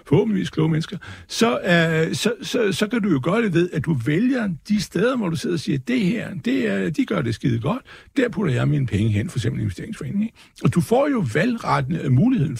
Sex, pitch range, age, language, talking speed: male, 125-180 Hz, 60-79, Danish, 235 wpm